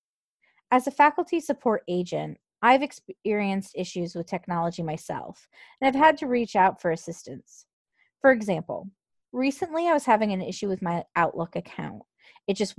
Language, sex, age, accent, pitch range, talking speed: English, female, 20-39, American, 180-230 Hz, 155 wpm